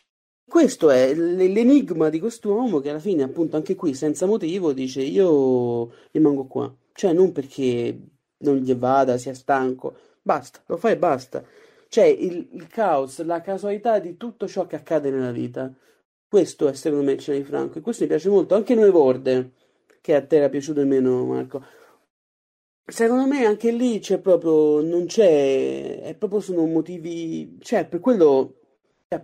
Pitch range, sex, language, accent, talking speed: 140-195 Hz, male, Italian, native, 165 wpm